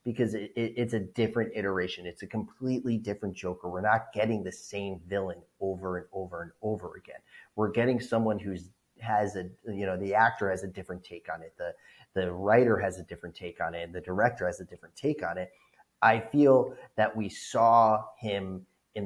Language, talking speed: English, 195 wpm